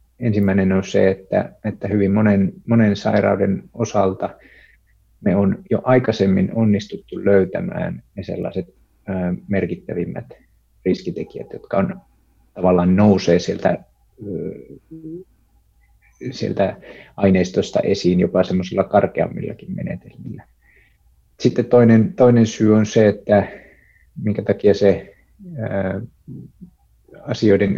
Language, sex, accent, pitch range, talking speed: Finnish, male, native, 90-110 Hz, 90 wpm